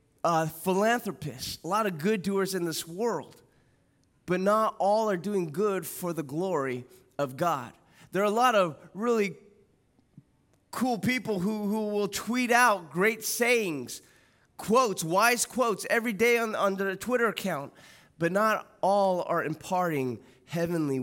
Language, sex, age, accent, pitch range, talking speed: English, male, 20-39, American, 145-200 Hz, 150 wpm